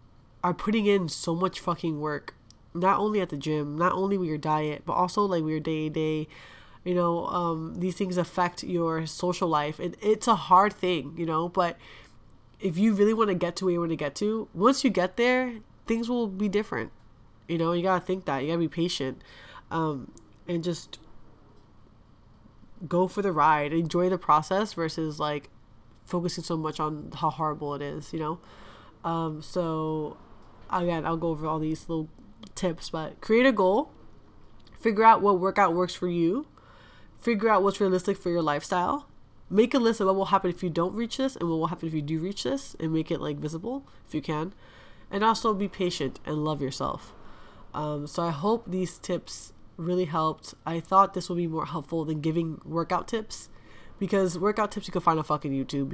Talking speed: 200 wpm